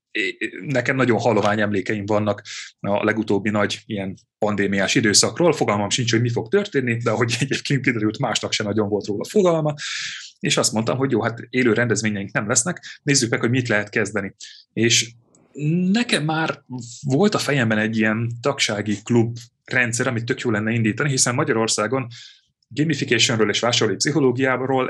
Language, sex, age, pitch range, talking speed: Hungarian, male, 30-49, 105-125 Hz, 155 wpm